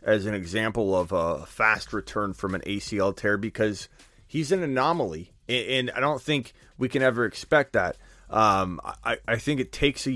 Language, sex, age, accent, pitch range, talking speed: English, male, 30-49, American, 110-155 Hz, 185 wpm